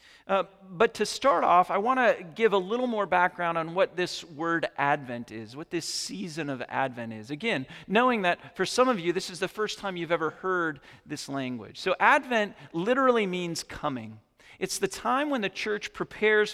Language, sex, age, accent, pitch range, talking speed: English, male, 40-59, American, 145-215 Hz, 195 wpm